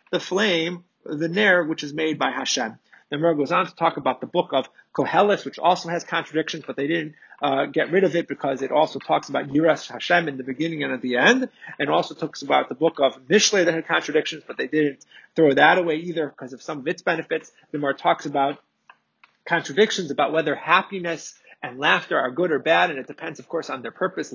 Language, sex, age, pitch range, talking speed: English, male, 30-49, 145-190 Hz, 220 wpm